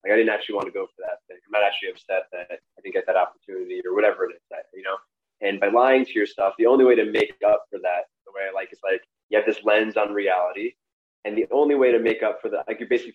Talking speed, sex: 290 wpm, male